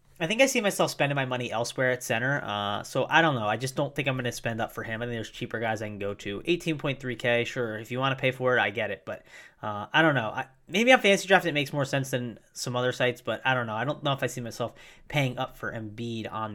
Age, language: 20-39, English